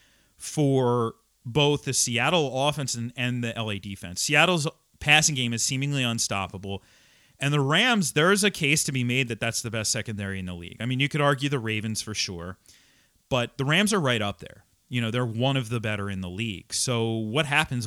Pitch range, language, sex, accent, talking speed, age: 110-150 Hz, English, male, American, 210 wpm, 30-49